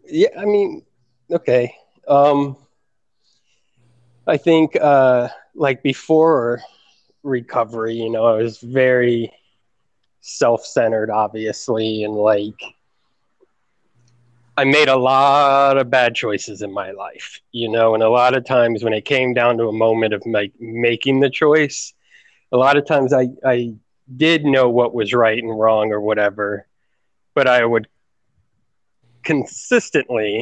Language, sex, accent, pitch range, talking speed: English, male, American, 110-135 Hz, 135 wpm